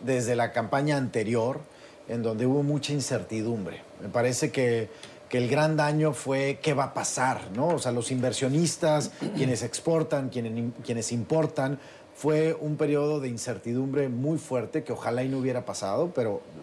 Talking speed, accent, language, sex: 160 wpm, Mexican, English, male